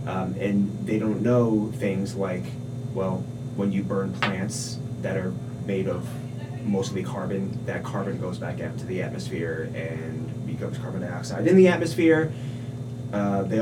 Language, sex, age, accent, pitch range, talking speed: English, male, 30-49, American, 105-125 Hz, 155 wpm